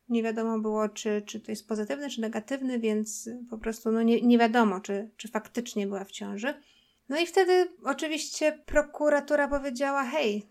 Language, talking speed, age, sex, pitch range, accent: Polish, 165 wpm, 50-69, female, 220-275 Hz, native